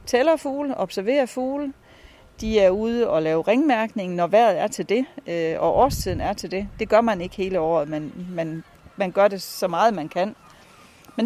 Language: Danish